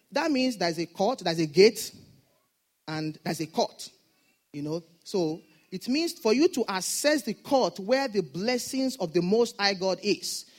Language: English